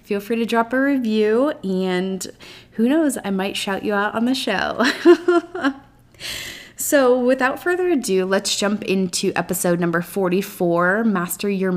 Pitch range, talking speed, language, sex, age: 185-240 Hz, 150 wpm, English, female, 20-39